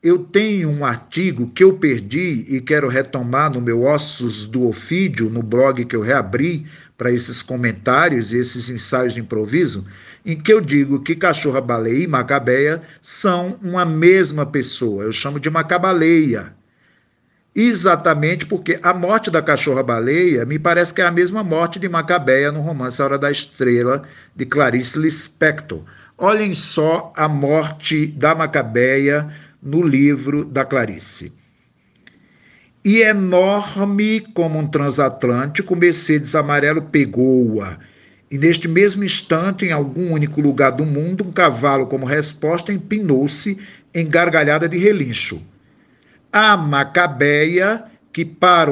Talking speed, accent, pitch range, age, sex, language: 135 wpm, Brazilian, 135-175 Hz, 50-69, male, Portuguese